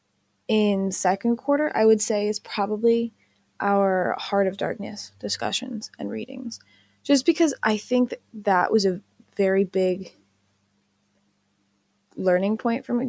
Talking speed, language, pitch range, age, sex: 135 wpm, English, 170-230 Hz, 20-39, female